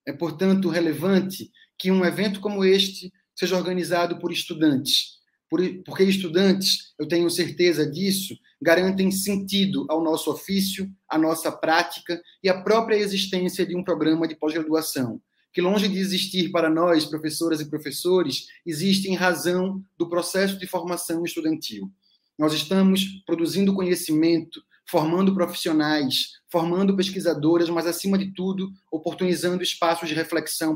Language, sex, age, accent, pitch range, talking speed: Portuguese, male, 20-39, Brazilian, 155-185 Hz, 135 wpm